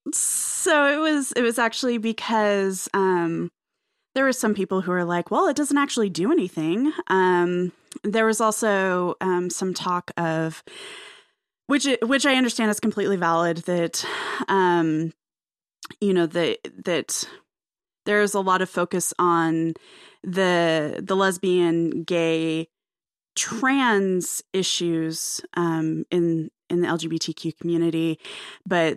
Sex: female